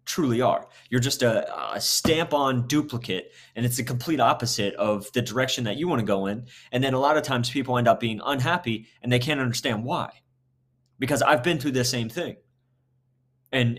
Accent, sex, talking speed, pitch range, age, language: American, male, 205 wpm, 115-140 Hz, 30-49, English